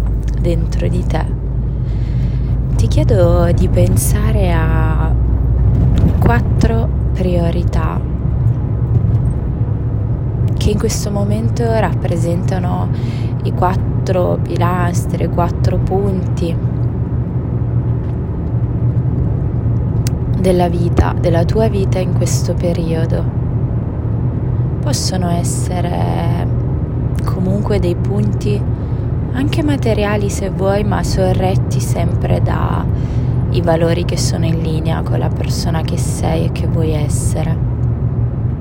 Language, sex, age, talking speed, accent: Italian, female, 20-39, 85 wpm, native